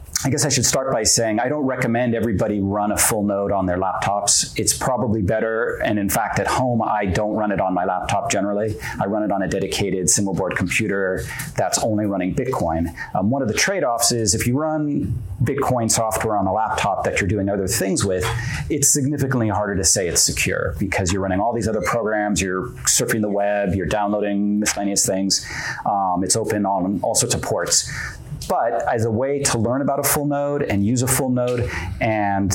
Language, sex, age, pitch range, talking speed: English, male, 40-59, 100-125 Hz, 210 wpm